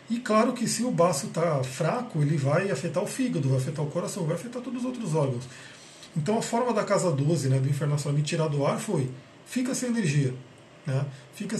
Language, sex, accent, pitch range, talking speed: Portuguese, male, Brazilian, 145-190 Hz, 220 wpm